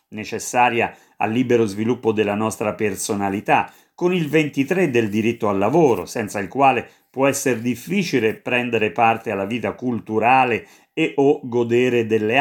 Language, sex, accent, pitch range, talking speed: Italian, male, native, 110-140 Hz, 140 wpm